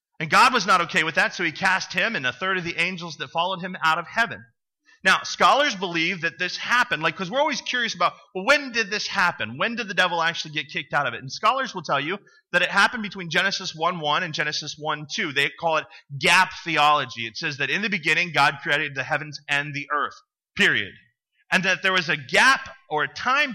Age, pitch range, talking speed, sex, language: 30-49, 145-195 Hz, 230 wpm, male, English